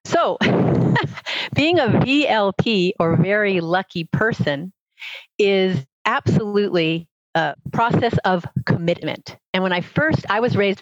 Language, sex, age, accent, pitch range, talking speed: English, female, 50-69, American, 170-210 Hz, 115 wpm